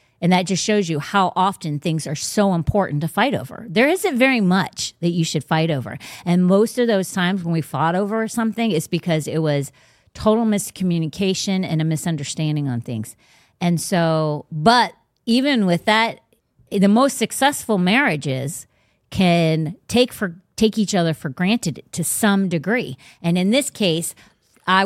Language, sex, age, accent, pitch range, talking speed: English, female, 40-59, American, 160-215 Hz, 170 wpm